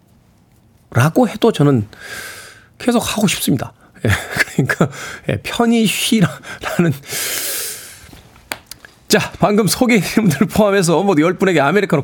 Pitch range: 165-225 Hz